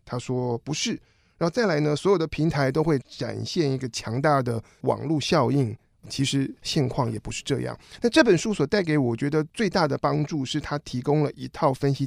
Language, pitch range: Chinese, 125-160 Hz